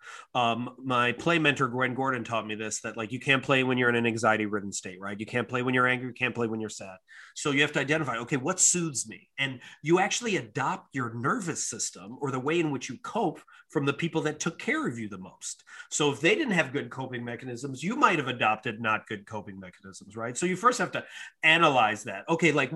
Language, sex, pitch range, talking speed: English, male, 120-170 Hz, 240 wpm